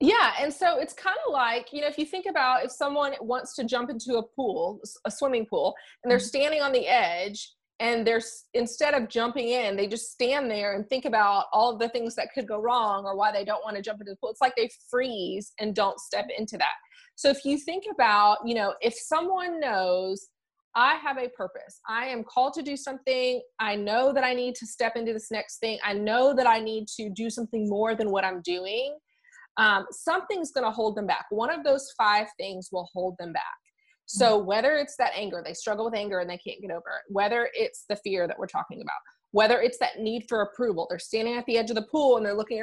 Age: 30-49